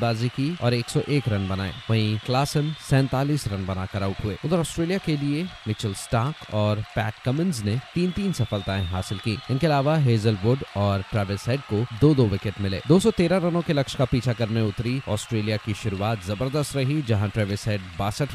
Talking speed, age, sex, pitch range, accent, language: 180 wpm, 30-49, male, 105-140 Hz, native, Hindi